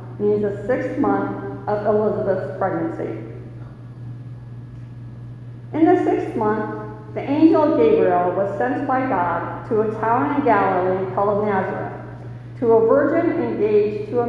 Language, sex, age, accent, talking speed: English, female, 50-69, American, 130 wpm